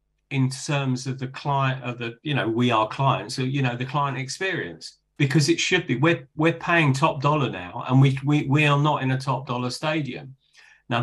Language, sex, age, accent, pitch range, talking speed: English, male, 40-59, British, 125-145 Hz, 220 wpm